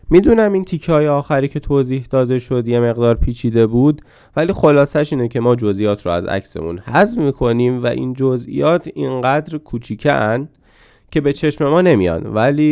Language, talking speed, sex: Persian, 165 wpm, male